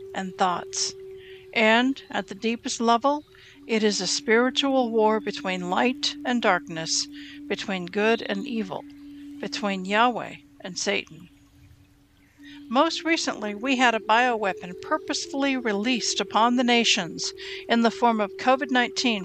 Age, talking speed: 60-79, 130 wpm